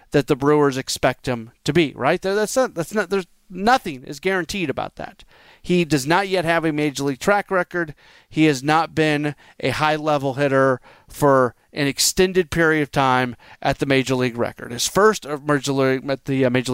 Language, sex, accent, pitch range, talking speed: English, male, American, 135-165 Hz, 205 wpm